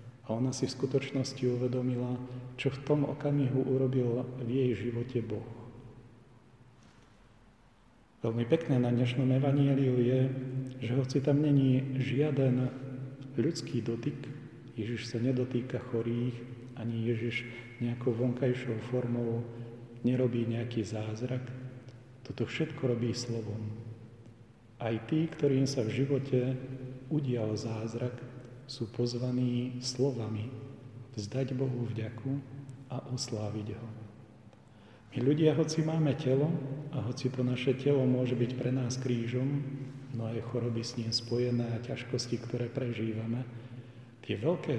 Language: Slovak